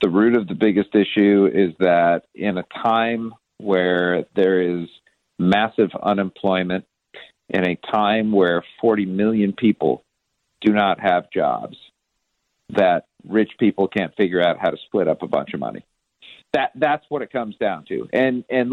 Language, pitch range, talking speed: English, 95-120 Hz, 160 wpm